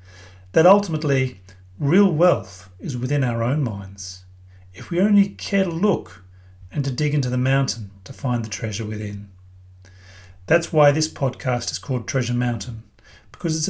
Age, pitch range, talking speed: 40-59, 110-155 Hz, 160 wpm